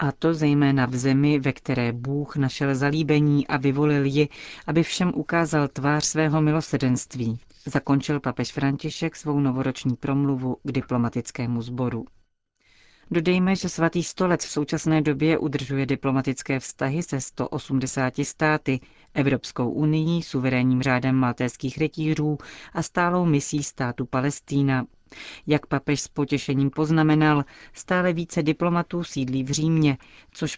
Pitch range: 130-155 Hz